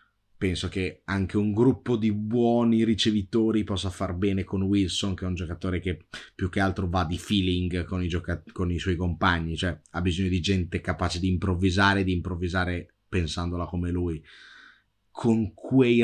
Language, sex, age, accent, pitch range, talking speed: Italian, male, 20-39, native, 90-105 Hz, 170 wpm